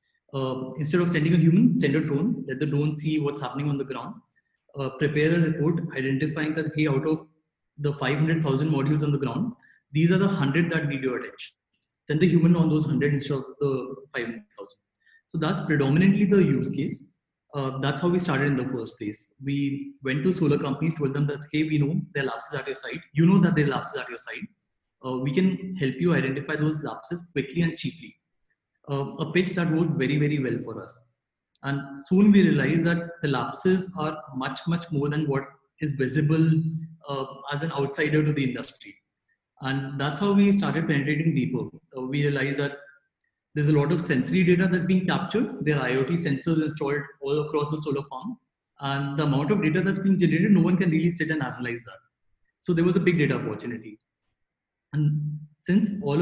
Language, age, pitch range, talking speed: English, 20-39, 140-170 Hz, 205 wpm